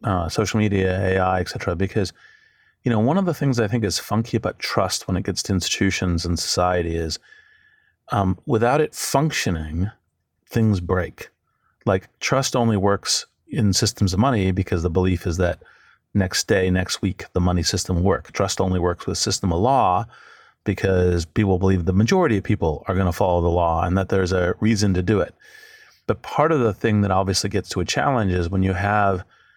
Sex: male